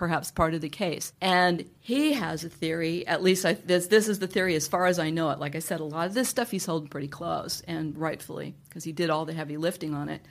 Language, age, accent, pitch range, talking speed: English, 50-69, American, 160-190 Hz, 270 wpm